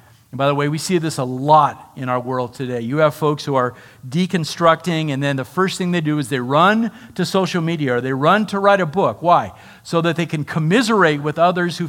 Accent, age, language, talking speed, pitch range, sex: American, 50-69, English, 240 wpm, 135-170 Hz, male